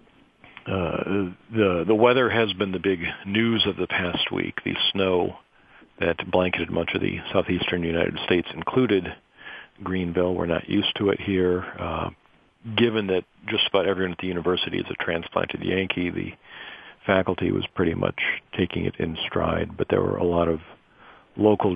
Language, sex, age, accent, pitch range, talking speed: English, male, 50-69, American, 85-95 Hz, 165 wpm